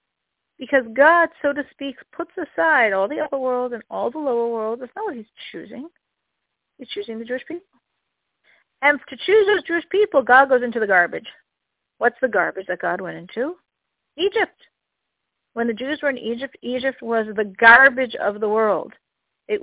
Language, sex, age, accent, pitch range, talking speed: English, female, 50-69, American, 215-285 Hz, 180 wpm